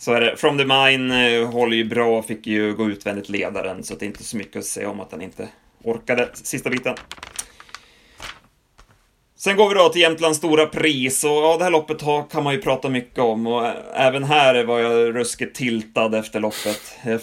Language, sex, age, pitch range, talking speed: Swedish, male, 30-49, 110-135 Hz, 205 wpm